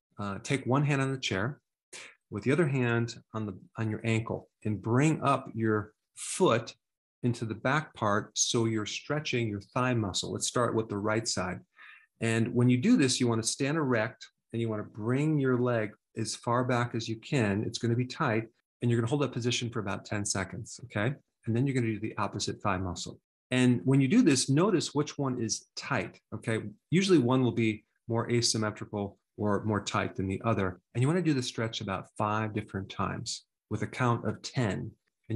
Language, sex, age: English, male, 40-59